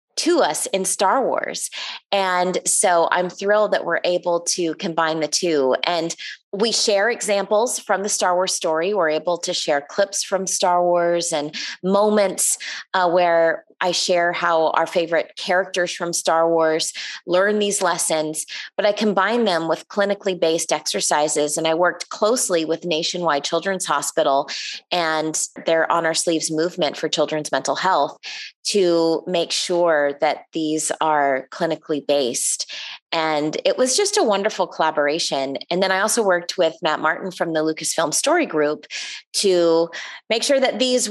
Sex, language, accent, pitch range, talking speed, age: female, English, American, 160-210 Hz, 160 wpm, 20-39